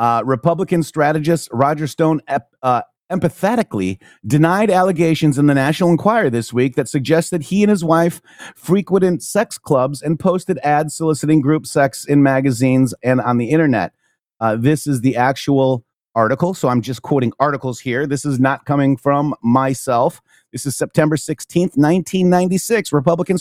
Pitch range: 135-175 Hz